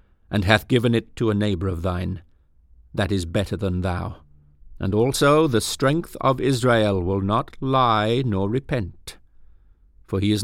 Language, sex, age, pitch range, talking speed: English, male, 50-69, 90-120 Hz, 160 wpm